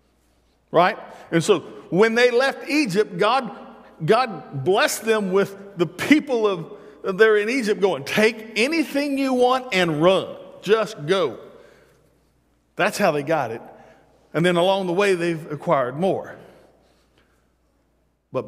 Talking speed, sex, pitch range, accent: 135 wpm, male, 145-220 Hz, American